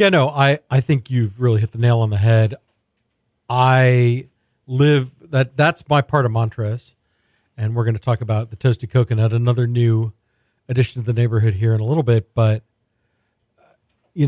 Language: English